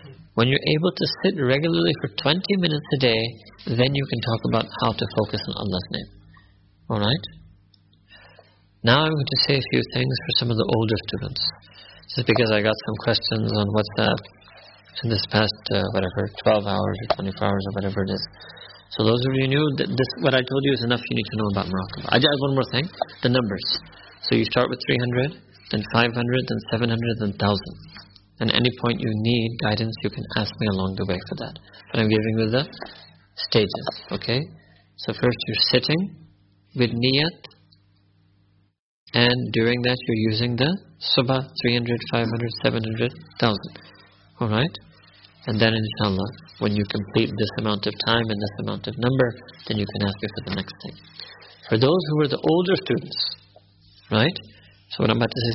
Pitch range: 100-125 Hz